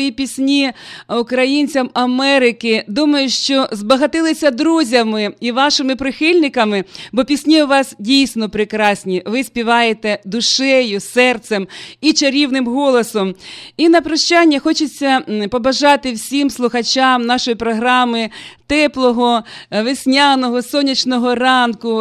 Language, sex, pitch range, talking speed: Russian, female, 230-275 Hz, 100 wpm